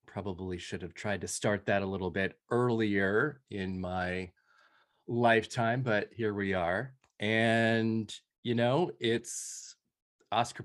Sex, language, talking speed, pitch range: male, English, 130 wpm, 90-110 Hz